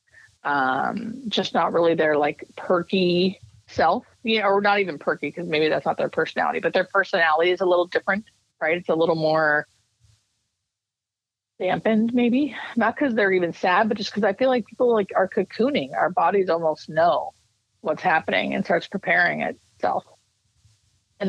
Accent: American